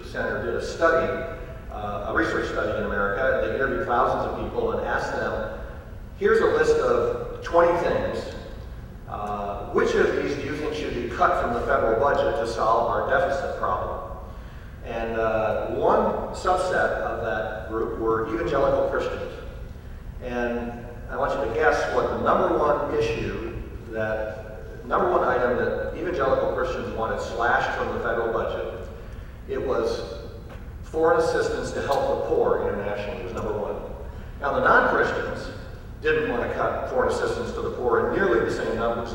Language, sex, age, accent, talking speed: English, male, 40-59, American, 160 wpm